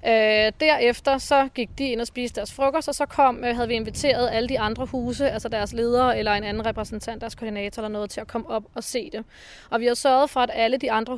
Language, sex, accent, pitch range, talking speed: Danish, female, native, 230-270 Hz, 260 wpm